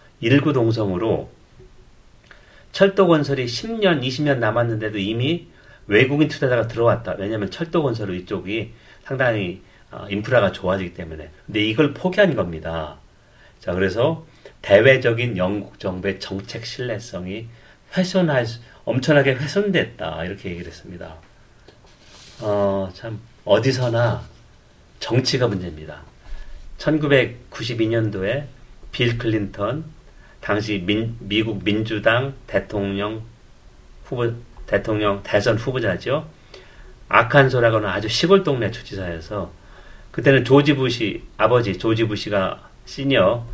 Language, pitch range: Korean, 100-135 Hz